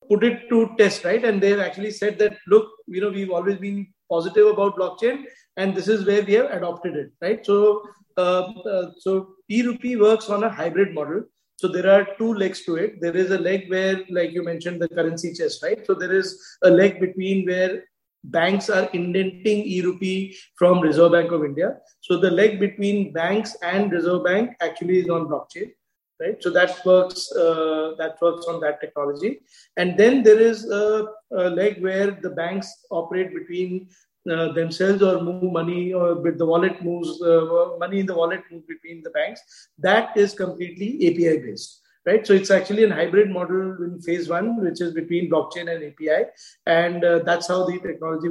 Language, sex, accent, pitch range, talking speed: English, male, Indian, 175-205 Hz, 190 wpm